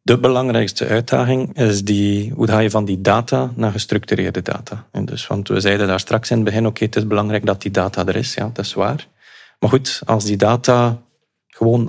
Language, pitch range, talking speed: Dutch, 105-120 Hz, 220 wpm